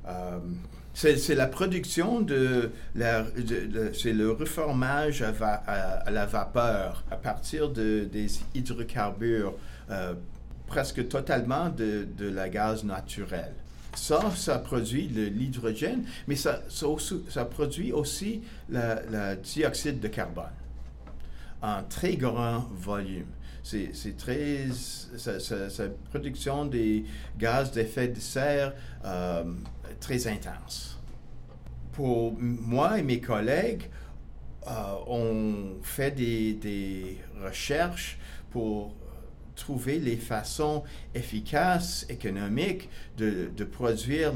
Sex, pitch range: male, 95-135 Hz